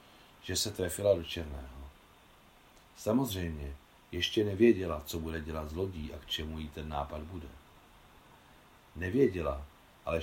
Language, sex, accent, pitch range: Czech, male, native, 80-105 Hz